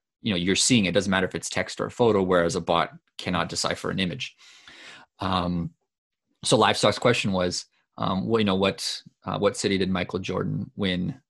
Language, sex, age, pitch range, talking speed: English, male, 30-49, 90-115 Hz, 190 wpm